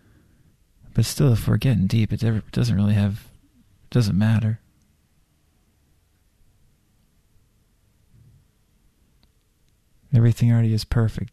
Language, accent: English, American